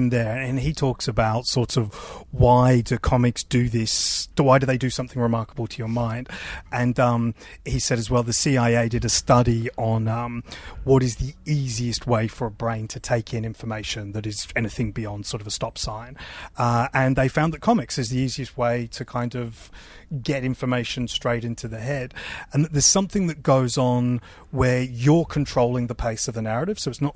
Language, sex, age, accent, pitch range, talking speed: English, male, 30-49, British, 115-130 Hz, 200 wpm